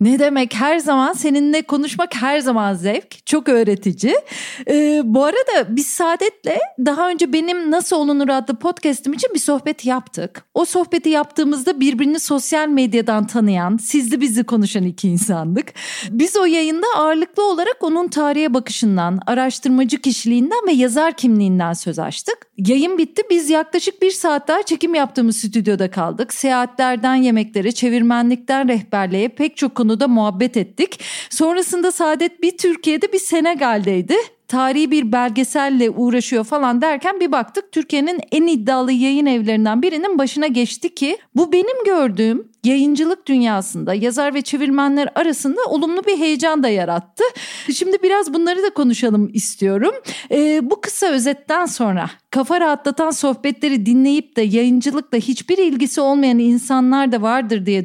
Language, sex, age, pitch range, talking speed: Turkish, female, 40-59, 235-320 Hz, 140 wpm